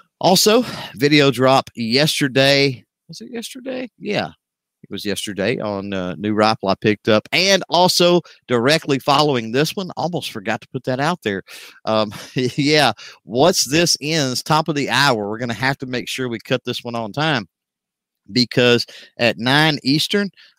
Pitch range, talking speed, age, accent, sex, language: 105-150 Hz, 165 wpm, 50-69, American, male, English